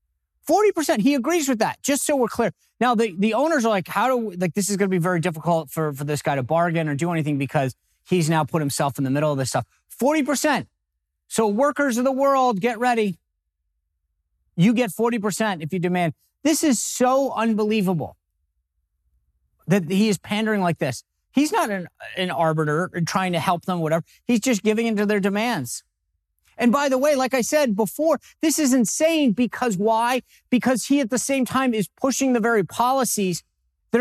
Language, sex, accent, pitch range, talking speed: English, male, American, 150-245 Hz, 195 wpm